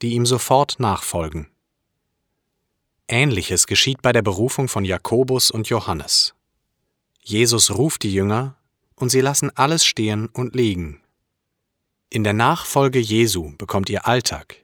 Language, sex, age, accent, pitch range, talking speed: German, male, 40-59, German, 100-130 Hz, 125 wpm